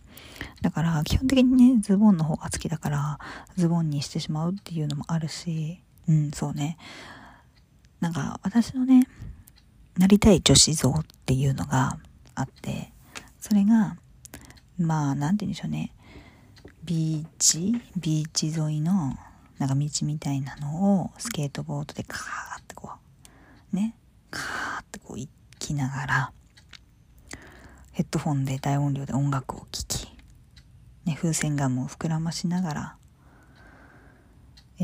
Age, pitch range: 40-59, 145-180 Hz